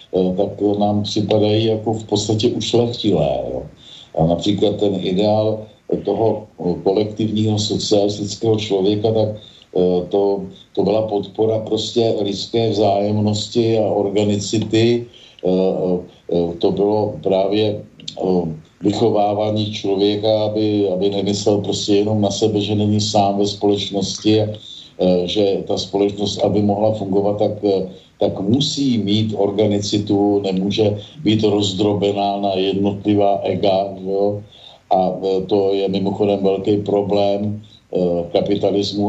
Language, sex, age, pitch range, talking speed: Slovak, male, 50-69, 95-105 Hz, 100 wpm